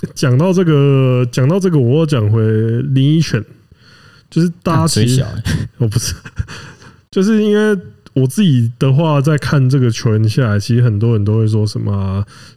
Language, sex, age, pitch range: Chinese, male, 20-39, 115-150 Hz